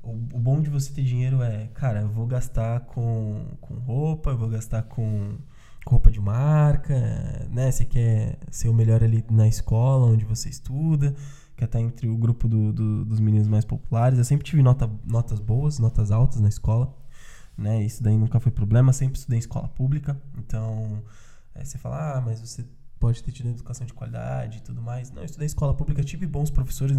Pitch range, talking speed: 115-140 Hz, 190 wpm